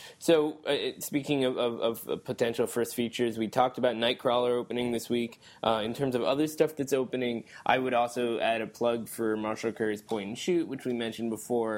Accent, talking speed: American, 205 wpm